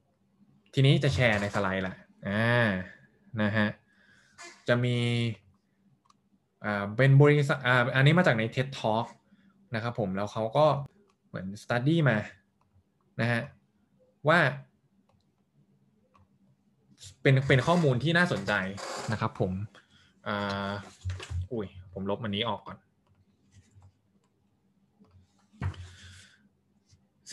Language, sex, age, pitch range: Thai, male, 20-39, 100-135 Hz